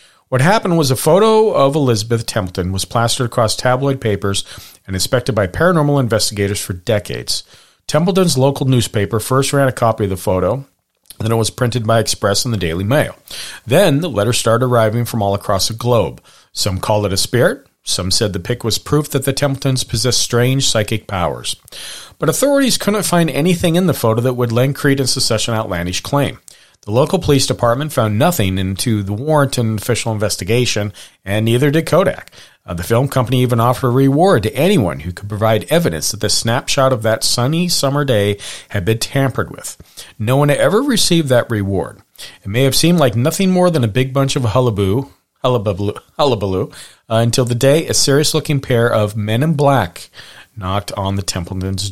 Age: 40-59